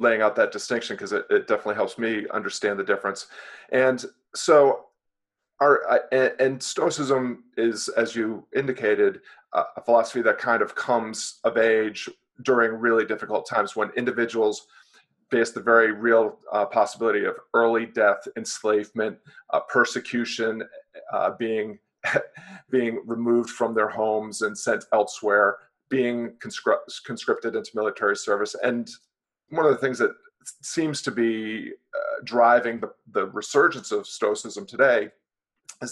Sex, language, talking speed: male, English, 135 wpm